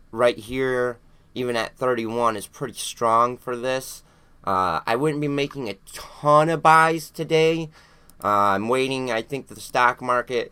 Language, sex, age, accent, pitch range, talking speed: English, male, 30-49, American, 105-150 Hz, 160 wpm